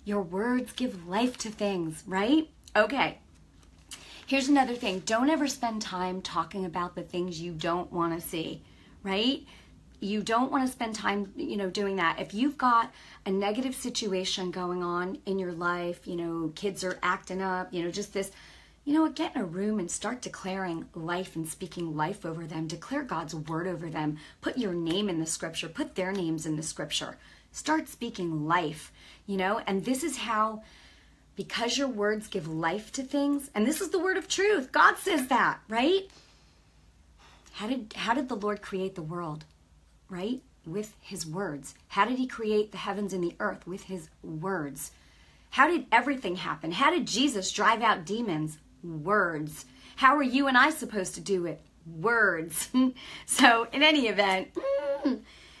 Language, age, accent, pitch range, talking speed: English, 30-49, American, 175-245 Hz, 180 wpm